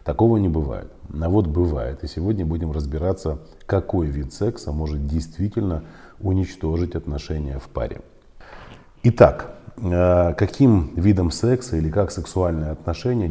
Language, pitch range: Russian, 80-95 Hz